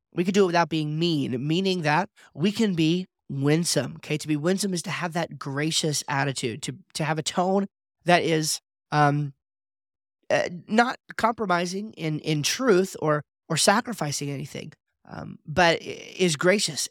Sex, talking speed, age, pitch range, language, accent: male, 160 wpm, 30-49, 150-180 Hz, English, American